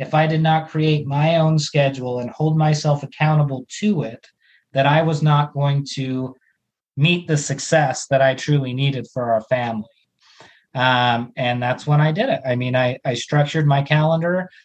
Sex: male